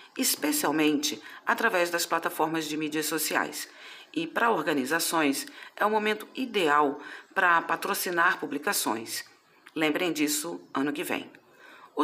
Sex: female